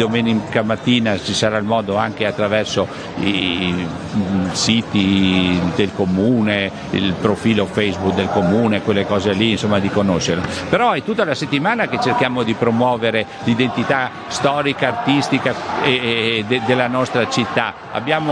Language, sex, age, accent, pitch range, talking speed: Italian, male, 50-69, native, 115-140 Hz, 140 wpm